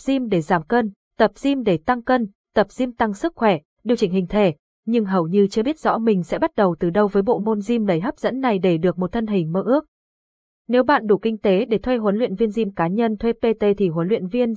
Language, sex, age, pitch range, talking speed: Vietnamese, female, 20-39, 185-235 Hz, 265 wpm